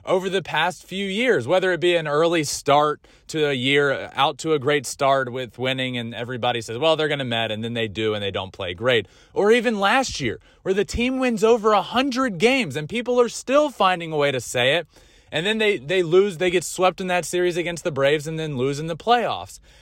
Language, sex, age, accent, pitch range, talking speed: English, male, 20-39, American, 130-190 Hz, 240 wpm